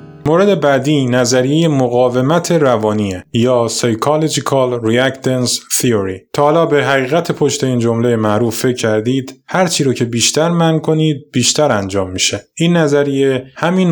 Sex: male